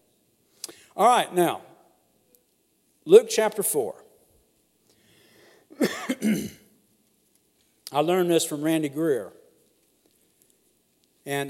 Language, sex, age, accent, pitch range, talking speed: English, male, 60-79, American, 165-255 Hz, 70 wpm